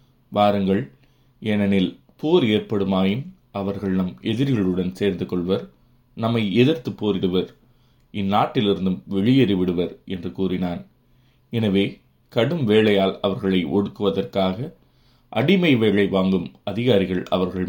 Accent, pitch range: native, 95-120 Hz